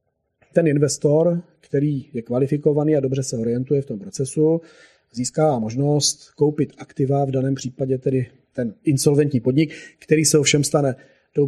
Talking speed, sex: 145 wpm, male